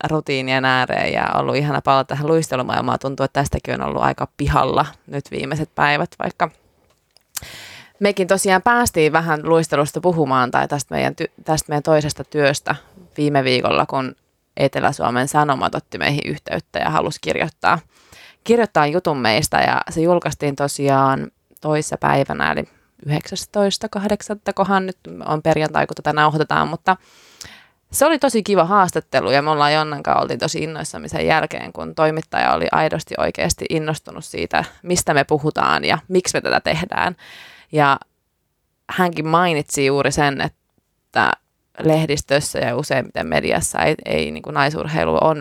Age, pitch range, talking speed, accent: 20-39, 140-170 Hz, 140 wpm, native